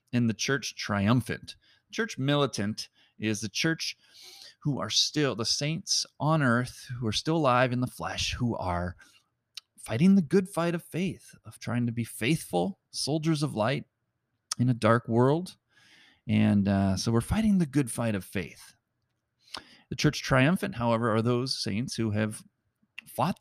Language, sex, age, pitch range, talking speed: English, male, 30-49, 105-140 Hz, 160 wpm